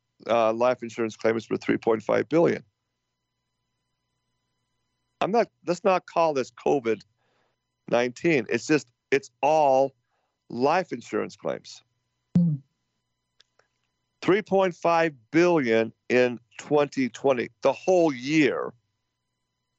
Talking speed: 100 wpm